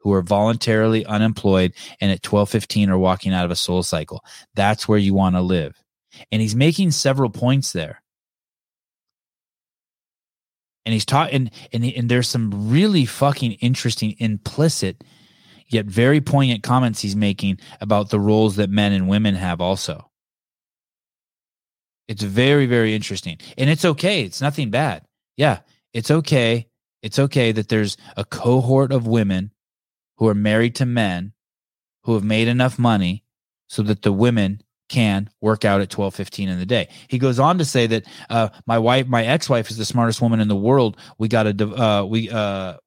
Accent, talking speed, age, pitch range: American, 170 wpm, 20-39, 105-125 Hz